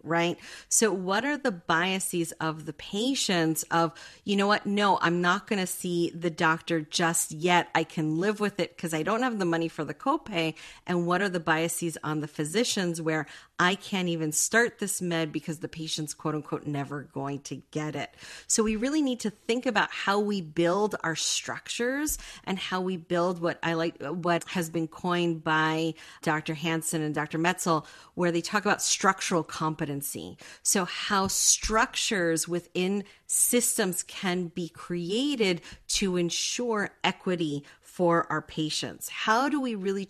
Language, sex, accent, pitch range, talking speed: English, female, American, 165-210 Hz, 170 wpm